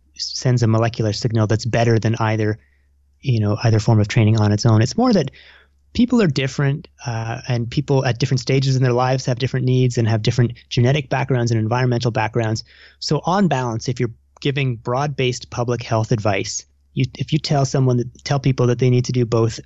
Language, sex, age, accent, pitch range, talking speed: English, male, 30-49, American, 110-130 Hz, 205 wpm